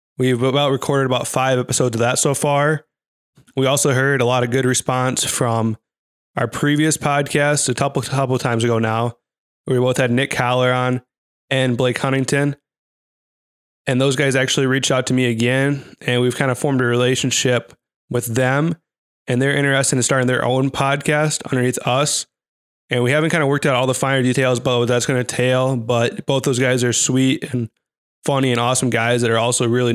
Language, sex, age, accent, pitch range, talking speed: English, male, 20-39, American, 125-140 Hz, 195 wpm